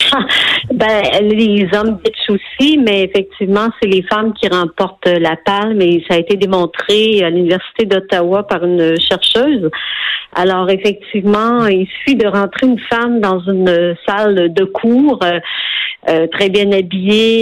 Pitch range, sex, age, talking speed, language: 185-215 Hz, female, 50-69, 145 wpm, French